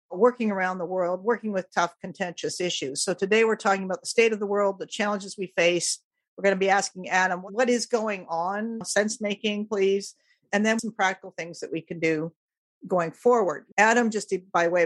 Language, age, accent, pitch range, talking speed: English, 50-69, American, 170-210 Hz, 200 wpm